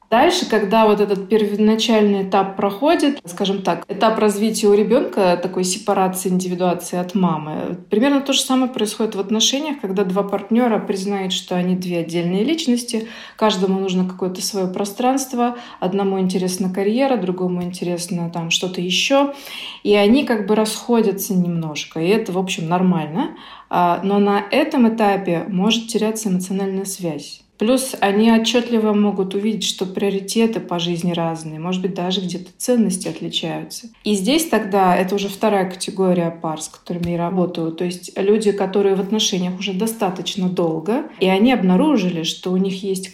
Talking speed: 155 wpm